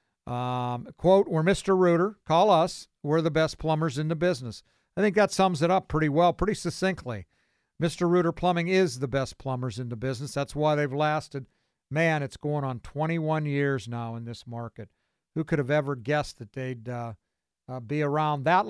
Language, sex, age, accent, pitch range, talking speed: English, male, 50-69, American, 140-175 Hz, 195 wpm